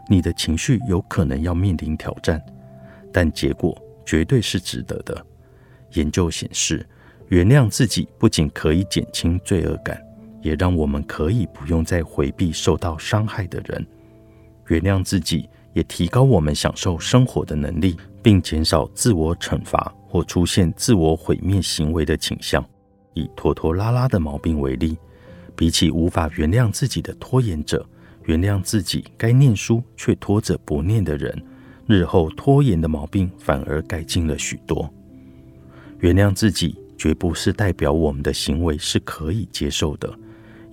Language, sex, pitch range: Chinese, male, 80-110 Hz